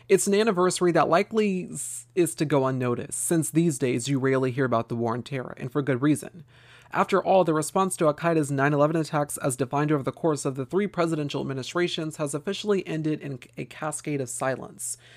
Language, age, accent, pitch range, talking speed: English, 30-49, American, 135-175 Hz, 200 wpm